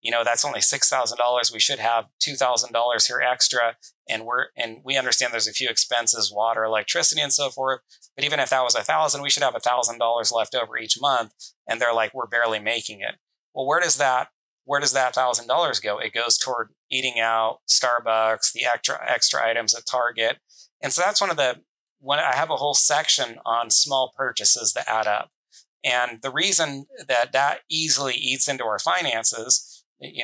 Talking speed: 190 wpm